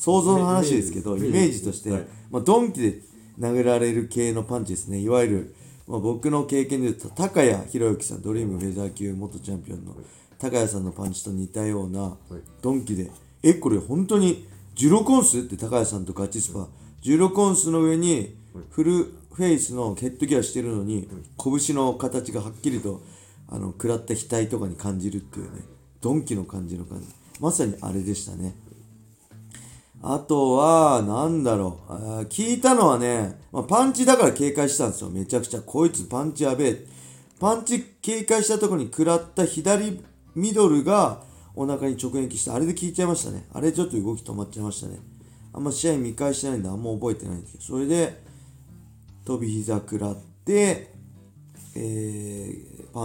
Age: 40-59